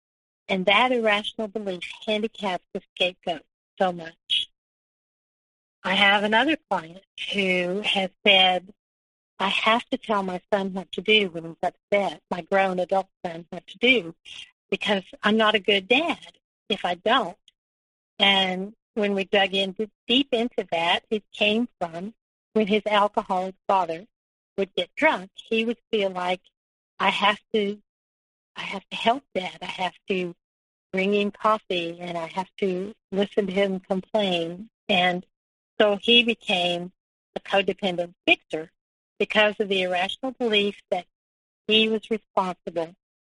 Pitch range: 180-215 Hz